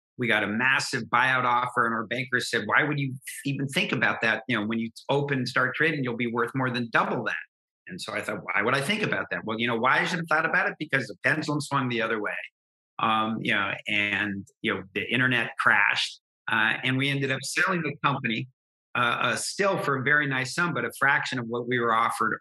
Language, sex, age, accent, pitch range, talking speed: English, male, 50-69, American, 115-145 Hz, 245 wpm